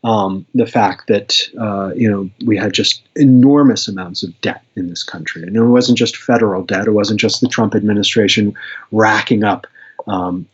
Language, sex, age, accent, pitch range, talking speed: English, male, 30-49, American, 105-140 Hz, 180 wpm